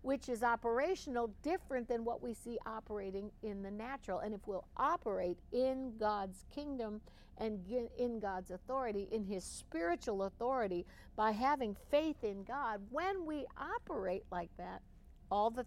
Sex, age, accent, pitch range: female, 60-79, American, 185-255 Hz